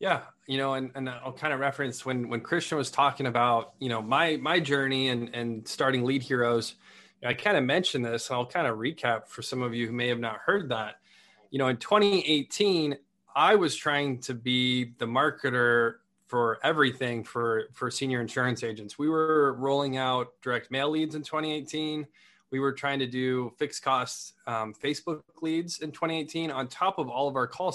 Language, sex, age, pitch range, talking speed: English, male, 20-39, 125-145 Hz, 195 wpm